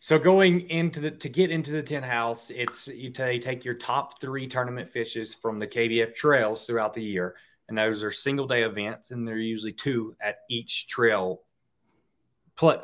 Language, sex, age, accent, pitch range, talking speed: English, male, 30-49, American, 115-150 Hz, 190 wpm